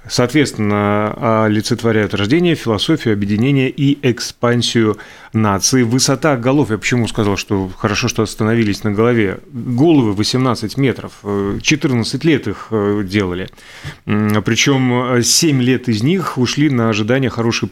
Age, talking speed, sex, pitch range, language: 30-49, 120 wpm, male, 110-135 Hz, Russian